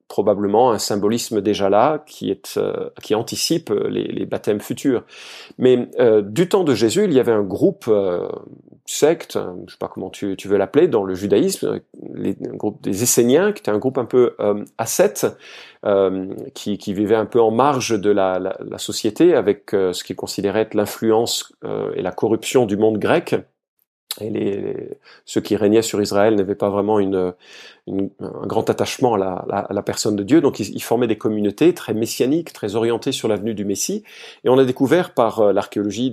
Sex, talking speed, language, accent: male, 205 wpm, French, French